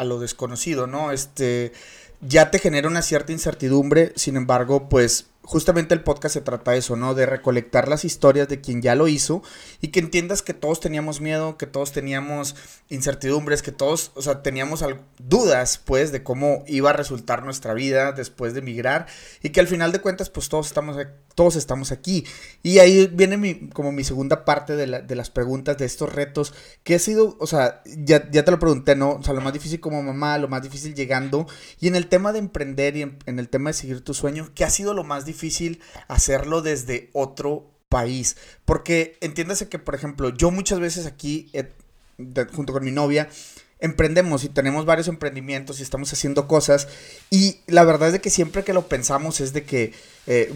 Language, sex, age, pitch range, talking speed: Spanish, male, 30-49, 135-160 Hz, 210 wpm